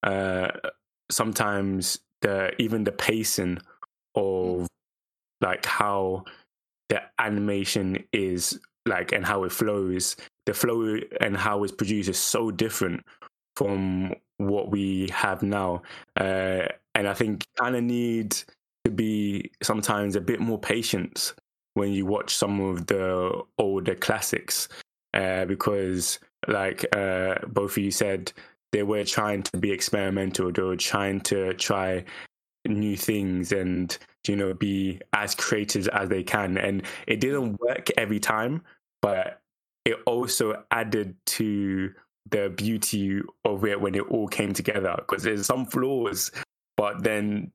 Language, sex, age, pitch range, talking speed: English, male, 10-29, 95-110 Hz, 140 wpm